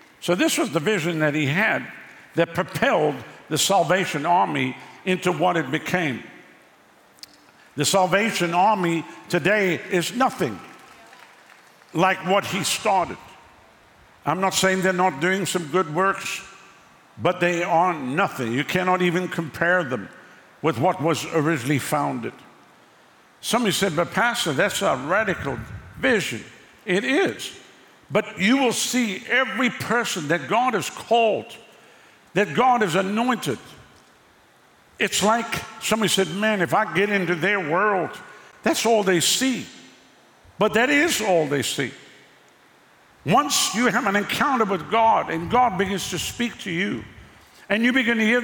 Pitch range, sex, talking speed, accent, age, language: 175-225 Hz, male, 140 wpm, American, 60-79, English